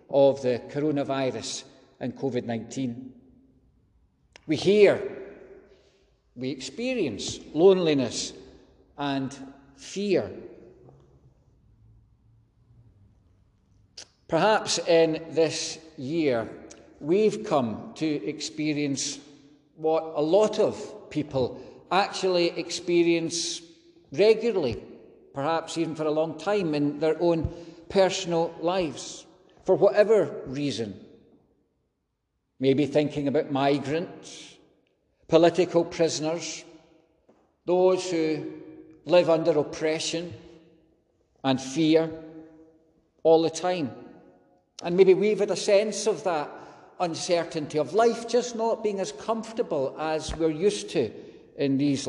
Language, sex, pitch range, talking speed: English, male, 135-170 Hz, 90 wpm